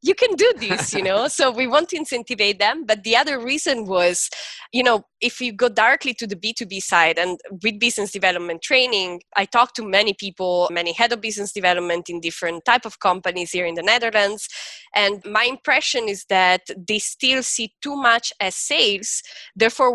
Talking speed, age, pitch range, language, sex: 195 wpm, 20-39, 185-240 Hz, English, female